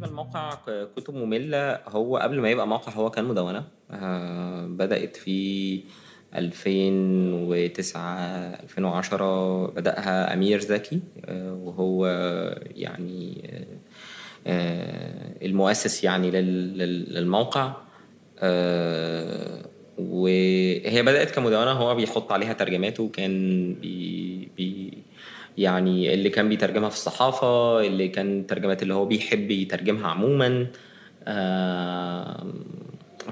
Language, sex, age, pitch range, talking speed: Arabic, male, 20-39, 90-105 Hz, 85 wpm